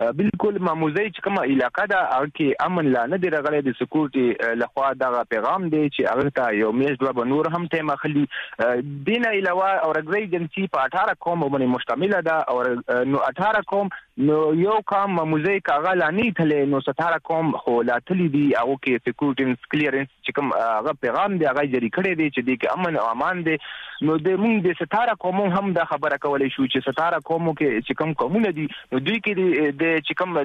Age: 30-49